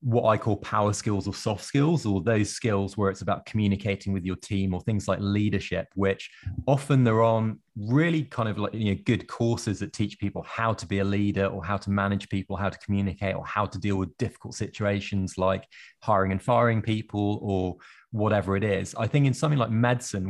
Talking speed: 215 wpm